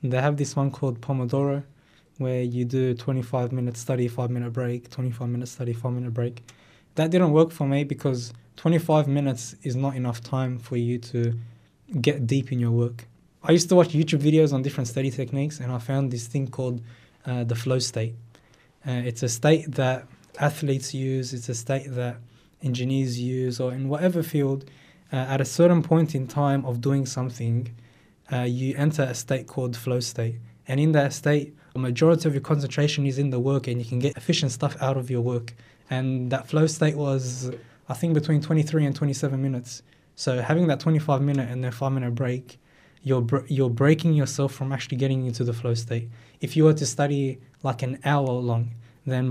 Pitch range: 120-140 Hz